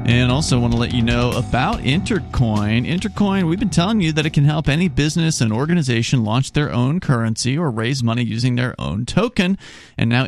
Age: 30-49